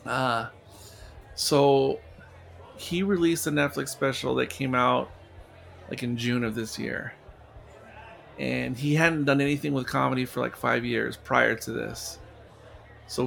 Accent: American